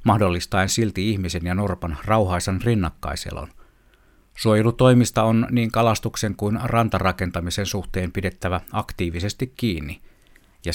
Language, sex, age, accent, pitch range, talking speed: Finnish, male, 60-79, native, 90-110 Hz, 100 wpm